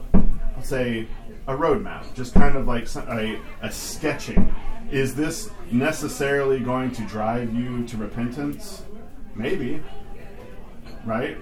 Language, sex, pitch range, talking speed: English, male, 110-140 Hz, 115 wpm